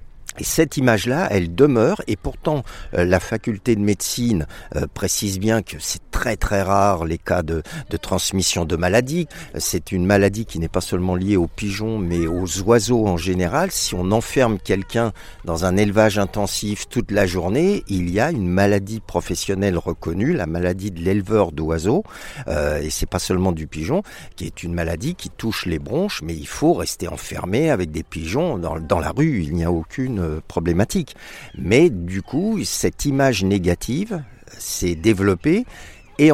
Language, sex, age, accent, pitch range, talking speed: French, male, 50-69, French, 85-110 Hz, 170 wpm